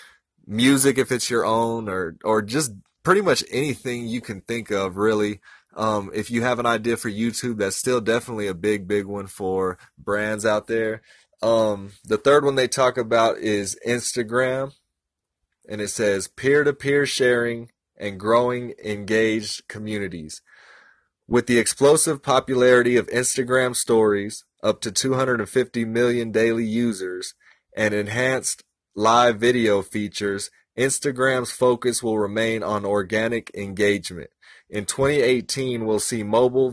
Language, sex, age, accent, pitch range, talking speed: English, male, 30-49, American, 105-125 Hz, 135 wpm